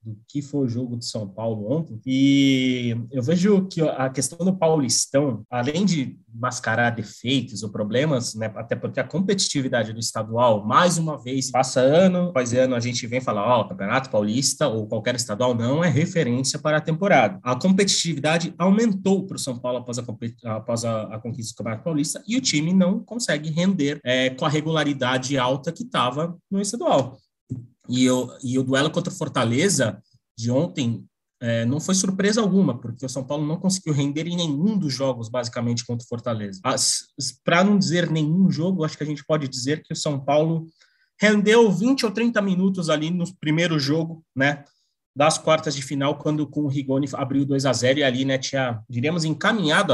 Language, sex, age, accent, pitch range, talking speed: Portuguese, male, 20-39, Brazilian, 120-160 Hz, 185 wpm